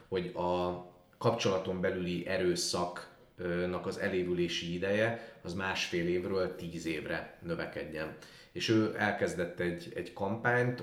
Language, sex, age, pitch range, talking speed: Hungarian, male, 30-49, 85-110 Hz, 110 wpm